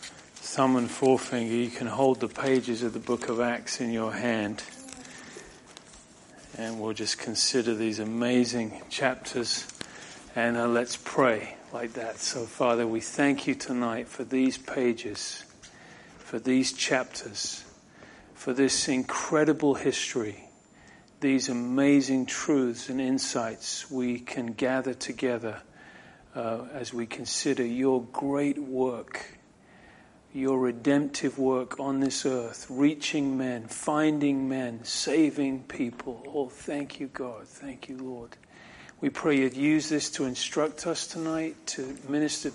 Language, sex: English, male